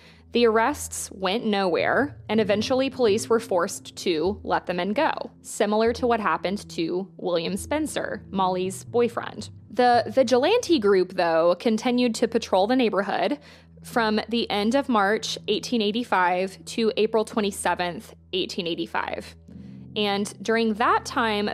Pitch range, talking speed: 185-235 Hz, 130 wpm